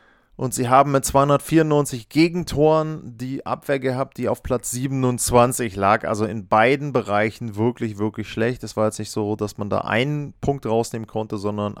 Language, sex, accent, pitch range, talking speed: German, male, German, 120-140 Hz, 175 wpm